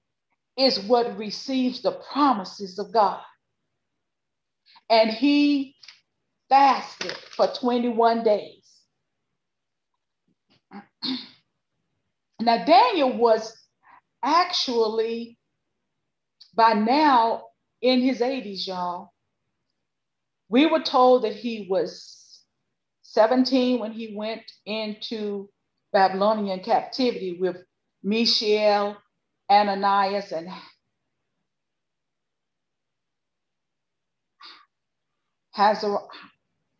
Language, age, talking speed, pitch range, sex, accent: English, 40-59, 65 wpm, 210-275 Hz, female, American